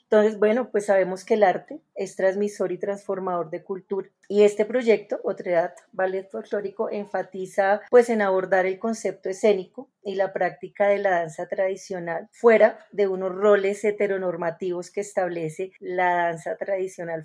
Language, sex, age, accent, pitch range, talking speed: Spanish, female, 30-49, Colombian, 185-210 Hz, 150 wpm